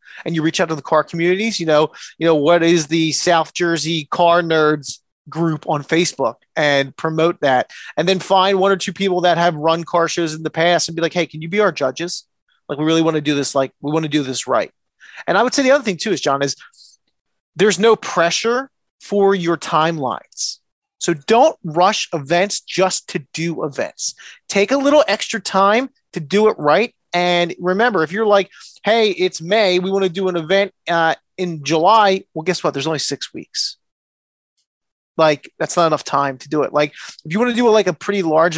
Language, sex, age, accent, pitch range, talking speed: English, male, 30-49, American, 160-195 Hz, 220 wpm